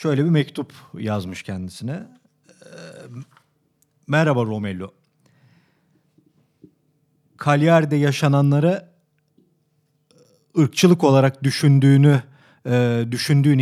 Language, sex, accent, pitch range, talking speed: Turkish, male, native, 135-160 Hz, 55 wpm